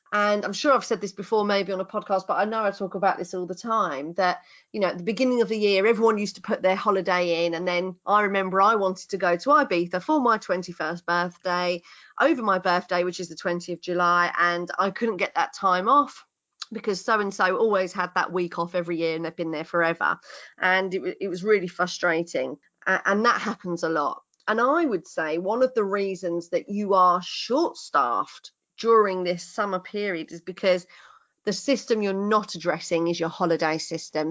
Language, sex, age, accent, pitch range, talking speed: English, female, 30-49, British, 175-210 Hz, 210 wpm